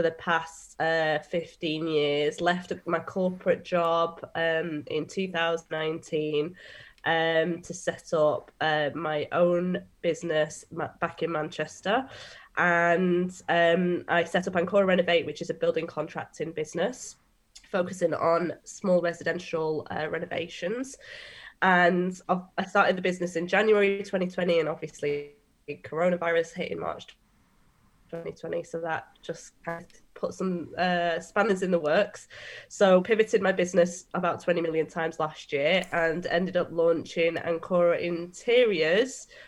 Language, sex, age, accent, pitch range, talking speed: English, female, 20-39, British, 160-180 Hz, 130 wpm